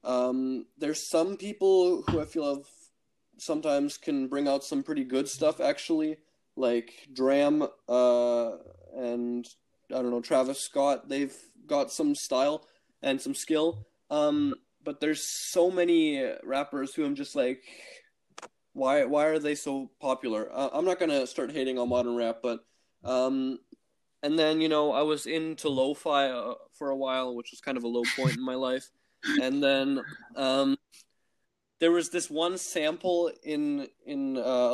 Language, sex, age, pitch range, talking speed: English, male, 20-39, 125-165 Hz, 160 wpm